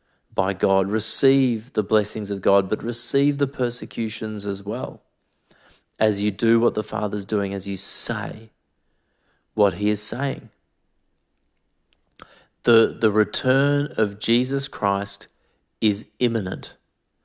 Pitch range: 105-125 Hz